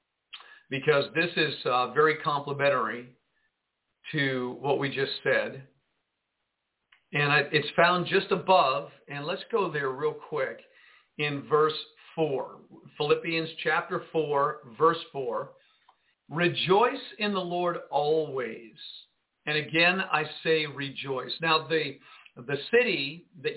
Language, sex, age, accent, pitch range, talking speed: English, male, 50-69, American, 140-170 Hz, 115 wpm